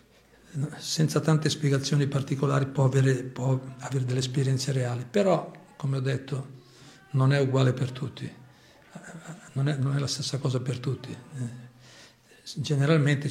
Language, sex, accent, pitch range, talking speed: Italian, male, native, 125-150 Hz, 125 wpm